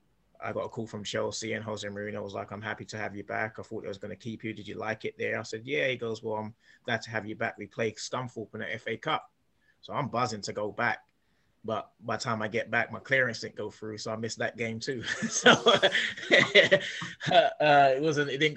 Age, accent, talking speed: 20-39, British, 255 wpm